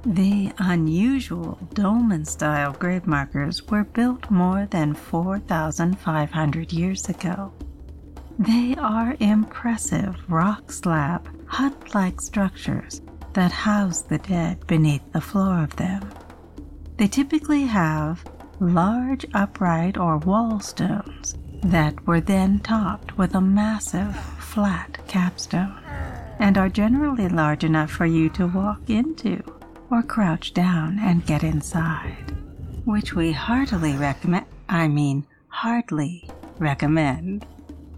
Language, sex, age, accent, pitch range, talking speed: English, female, 60-79, American, 150-205 Hz, 110 wpm